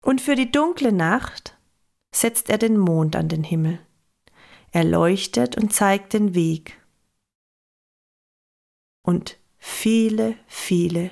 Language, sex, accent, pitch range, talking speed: German, female, German, 160-195 Hz, 115 wpm